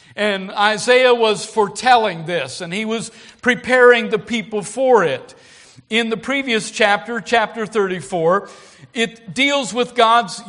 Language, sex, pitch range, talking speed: English, male, 200-245 Hz, 130 wpm